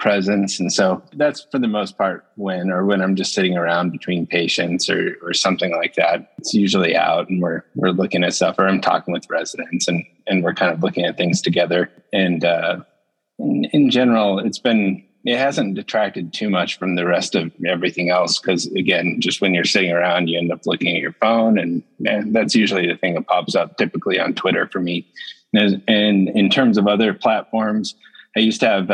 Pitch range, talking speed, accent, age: 90-105 Hz, 215 wpm, American, 30-49